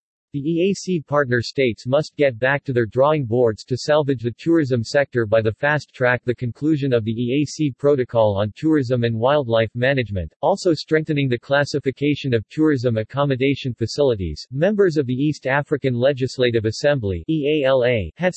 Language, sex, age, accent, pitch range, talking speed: English, male, 40-59, American, 120-145 Hz, 155 wpm